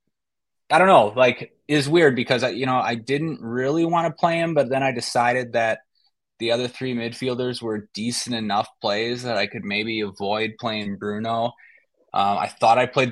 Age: 20-39